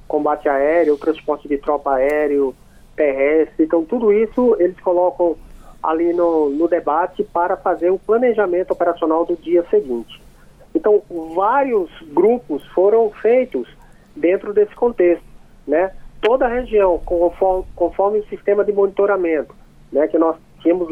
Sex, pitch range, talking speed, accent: male, 165-210 Hz, 135 wpm, Brazilian